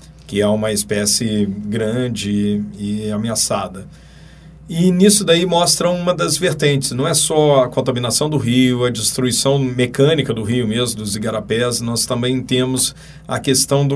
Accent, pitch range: Brazilian, 120-150 Hz